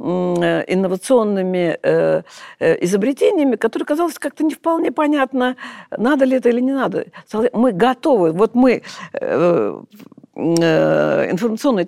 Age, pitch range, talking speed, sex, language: 50-69, 160-240 Hz, 95 wpm, female, Russian